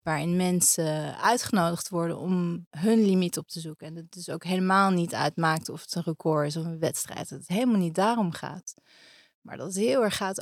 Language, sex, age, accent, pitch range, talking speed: Dutch, female, 30-49, Dutch, 170-210 Hz, 215 wpm